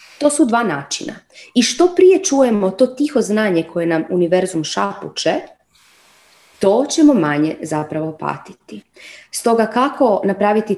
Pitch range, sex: 180-255 Hz, female